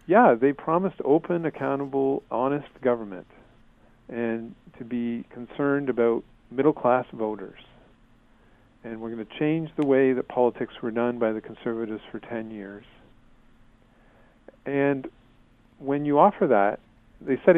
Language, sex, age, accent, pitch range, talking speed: English, male, 40-59, American, 115-140 Hz, 135 wpm